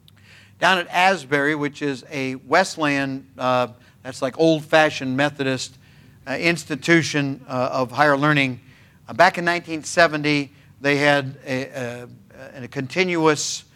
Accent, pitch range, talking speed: American, 130-155 Hz, 120 wpm